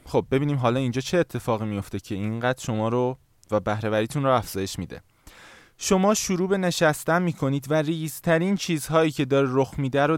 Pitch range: 115-165 Hz